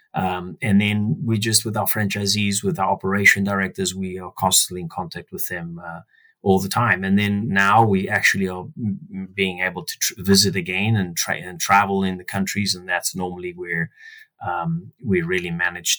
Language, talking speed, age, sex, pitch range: English, 190 wpm, 30-49, male, 90-110 Hz